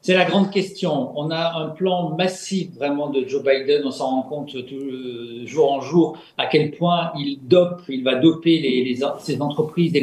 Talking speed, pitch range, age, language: 210 wpm, 150-200 Hz, 50-69, French